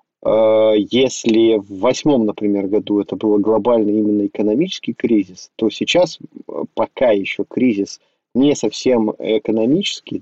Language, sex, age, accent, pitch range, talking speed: Russian, male, 20-39, native, 105-120 Hz, 110 wpm